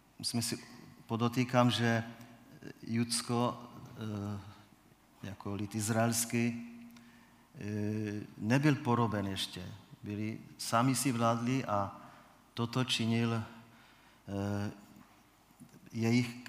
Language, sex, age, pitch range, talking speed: Czech, male, 40-59, 105-120 Hz, 70 wpm